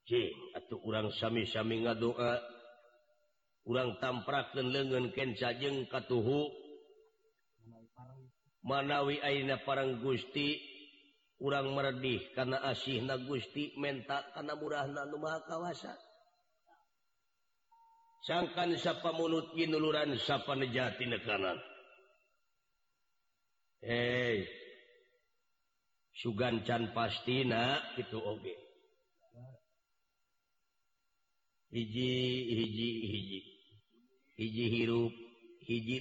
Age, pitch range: 50-69, 120-200 Hz